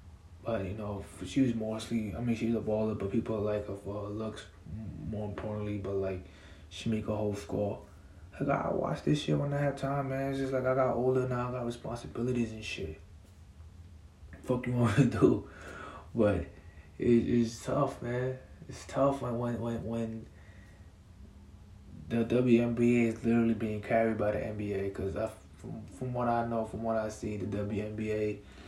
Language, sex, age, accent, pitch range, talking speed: English, male, 20-39, American, 95-115 Hz, 180 wpm